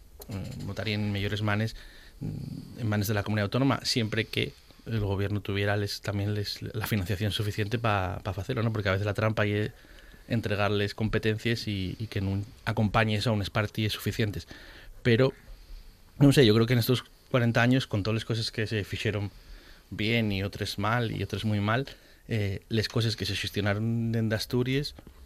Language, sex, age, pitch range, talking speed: Spanish, male, 30-49, 100-115 Hz, 180 wpm